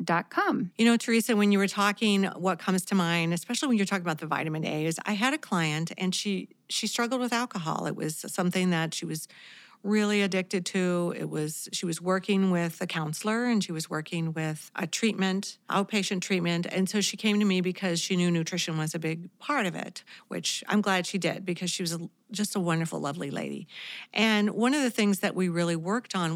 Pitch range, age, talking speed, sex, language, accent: 170-210 Hz, 40-59, 215 wpm, female, English, American